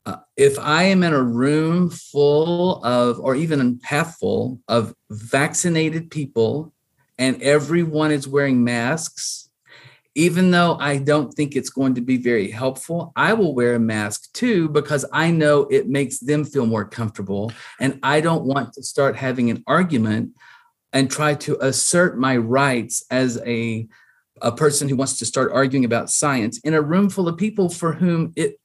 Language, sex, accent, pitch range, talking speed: English, male, American, 130-160 Hz, 170 wpm